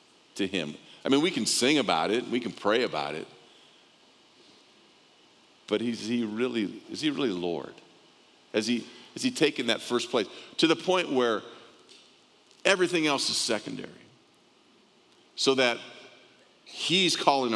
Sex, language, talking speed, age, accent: male, English, 145 wpm, 50-69, American